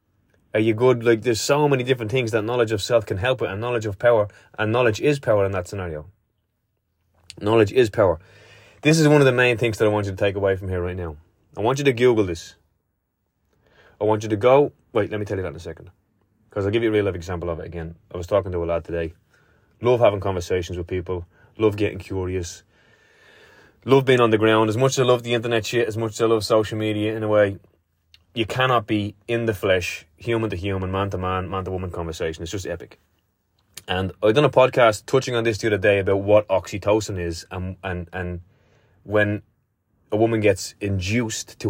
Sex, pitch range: male, 95-115 Hz